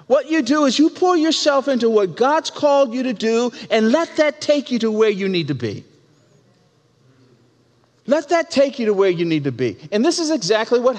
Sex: male